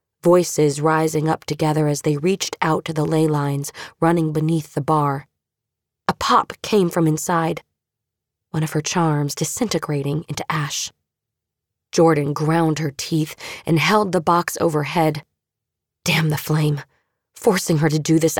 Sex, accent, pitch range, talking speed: female, American, 150-175 Hz, 145 wpm